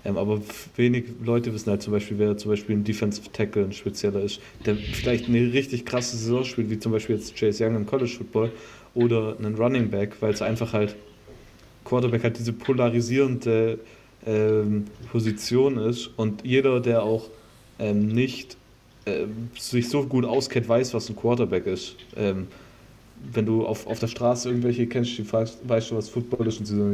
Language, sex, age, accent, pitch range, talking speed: German, male, 20-39, German, 105-120 Hz, 185 wpm